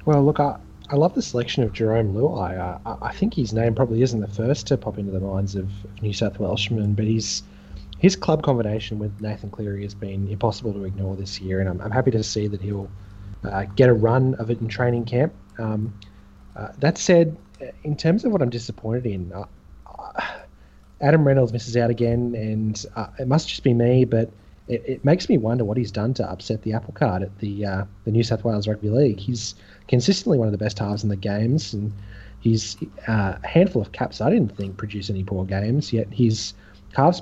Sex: male